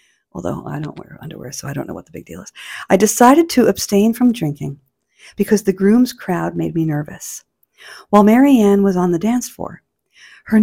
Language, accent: English, American